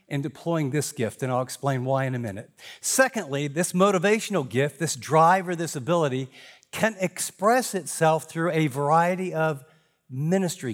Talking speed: 155 wpm